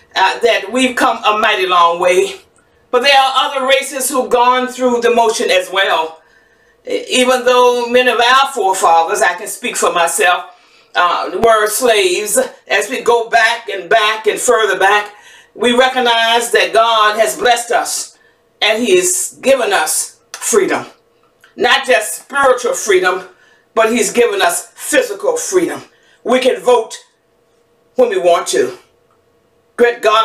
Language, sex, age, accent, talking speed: English, female, 50-69, American, 145 wpm